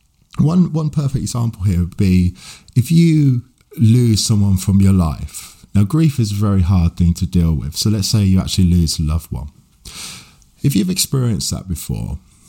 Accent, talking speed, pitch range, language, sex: British, 185 wpm, 90-120 Hz, English, male